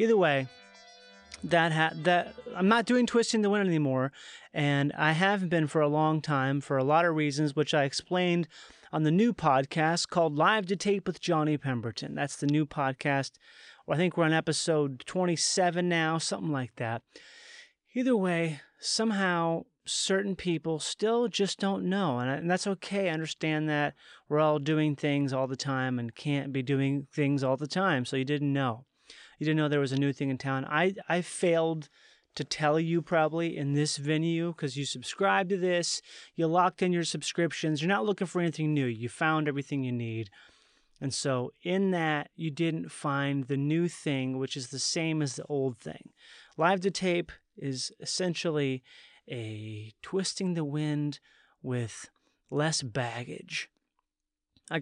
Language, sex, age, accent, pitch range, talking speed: English, male, 30-49, American, 140-175 Hz, 175 wpm